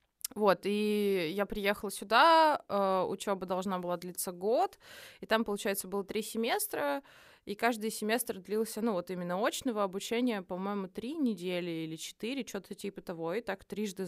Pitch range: 180-235 Hz